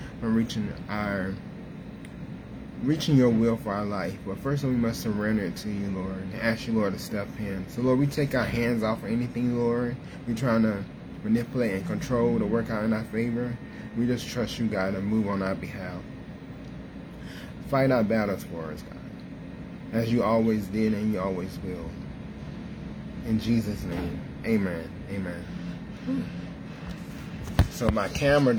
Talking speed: 170 wpm